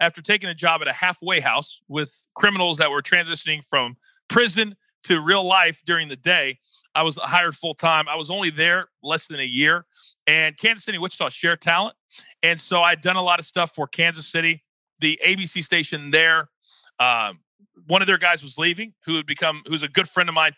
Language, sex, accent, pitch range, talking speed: English, male, American, 150-175 Hz, 205 wpm